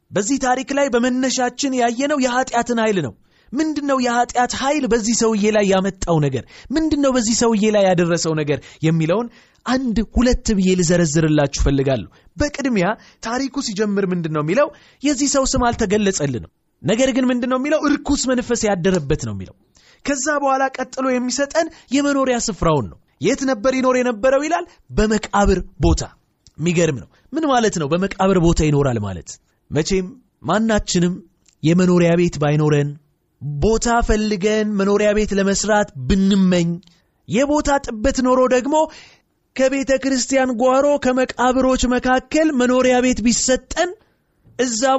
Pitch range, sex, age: 165-255 Hz, male, 30-49